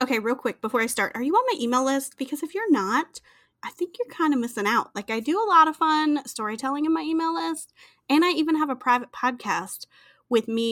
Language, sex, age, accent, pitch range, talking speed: English, female, 30-49, American, 210-280 Hz, 245 wpm